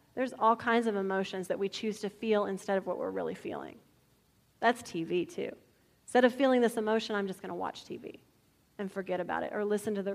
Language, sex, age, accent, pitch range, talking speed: English, female, 30-49, American, 210-280 Hz, 225 wpm